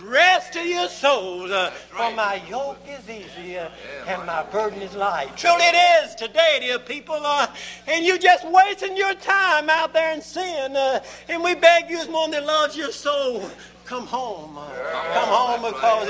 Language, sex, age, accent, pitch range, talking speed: English, male, 60-79, American, 215-300 Hz, 185 wpm